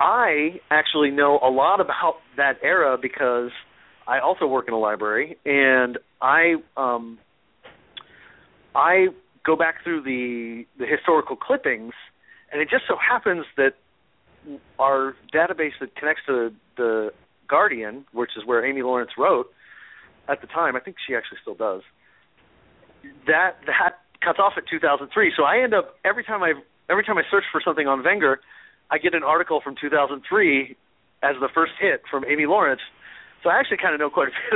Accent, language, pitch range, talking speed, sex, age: American, English, 120-160 Hz, 170 wpm, male, 40-59